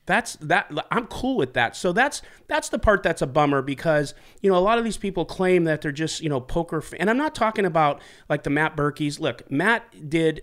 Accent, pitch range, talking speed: American, 130-160 Hz, 240 wpm